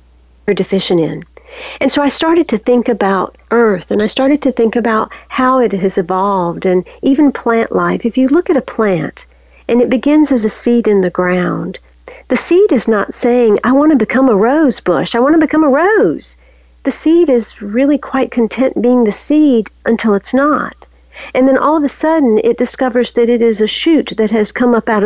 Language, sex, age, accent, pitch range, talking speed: English, female, 50-69, American, 215-275 Hz, 210 wpm